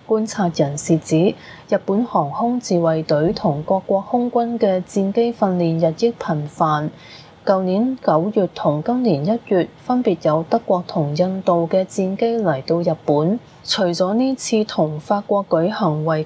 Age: 20-39